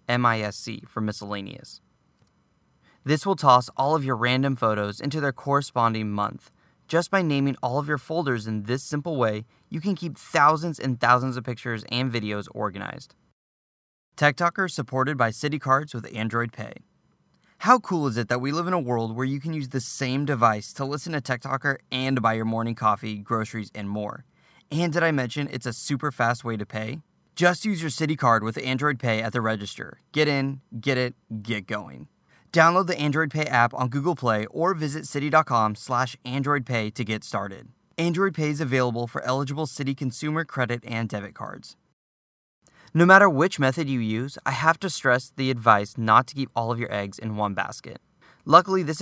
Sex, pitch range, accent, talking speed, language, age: male, 115-150 Hz, American, 190 wpm, English, 20-39